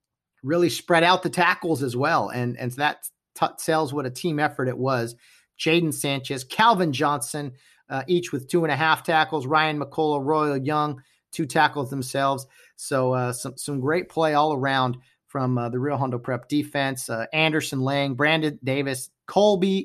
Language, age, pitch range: English, 40-59, 130-160 Hz